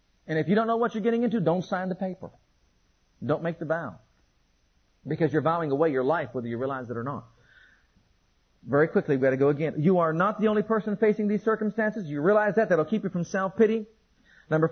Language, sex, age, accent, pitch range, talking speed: English, male, 40-59, American, 170-215 Hz, 220 wpm